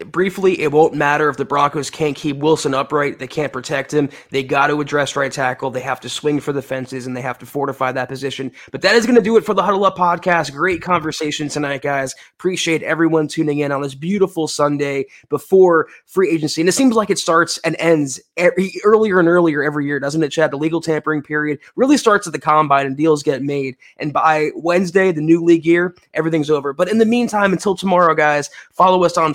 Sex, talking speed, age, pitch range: male, 225 wpm, 20-39, 145-170 Hz